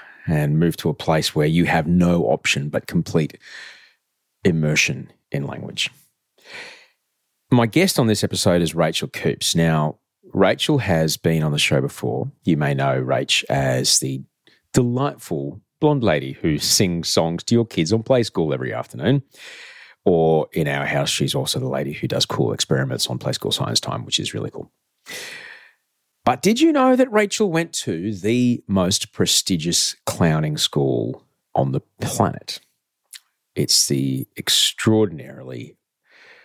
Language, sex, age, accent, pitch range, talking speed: English, male, 30-49, Australian, 80-120 Hz, 150 wpm